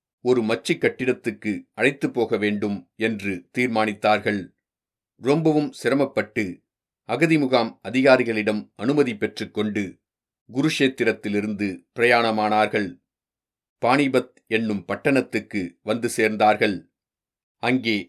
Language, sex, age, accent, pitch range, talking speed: Tamil, male, 40-59, native, 105-130 Hz, 75 wpm